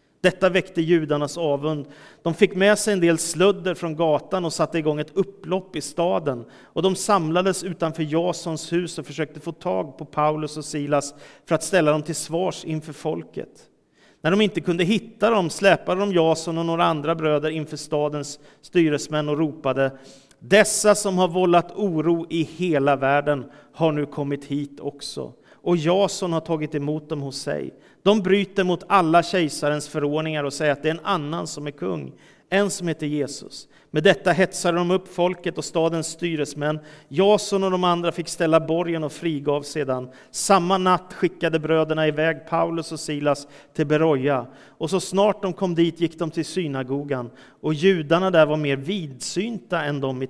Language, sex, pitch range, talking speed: Swedish, male, 150-180 Hz, 180 wpm